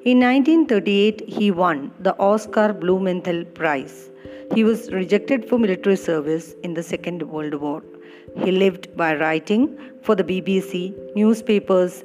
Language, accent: English, Indian